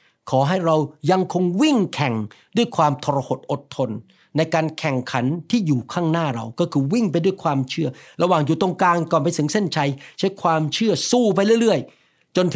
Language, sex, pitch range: Thai, male, 150-195 Hz